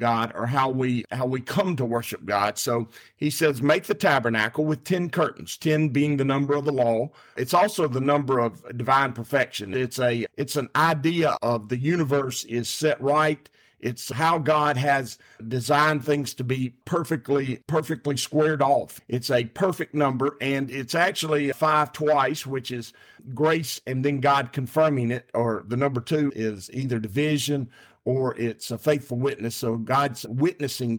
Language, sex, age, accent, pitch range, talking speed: English, male, 50-69, American, 125-155 Hz, 170 wpm